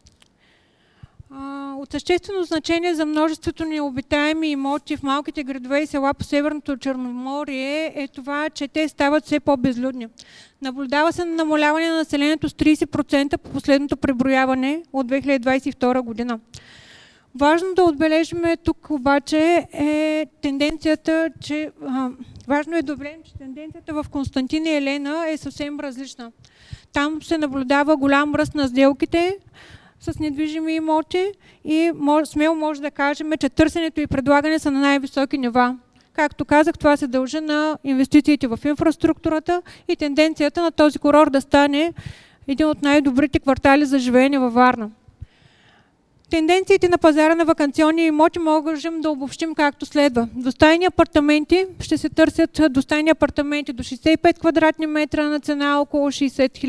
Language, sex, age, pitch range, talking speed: Bulgarian, female, 40-59, 280-315 Hz, 140 wpm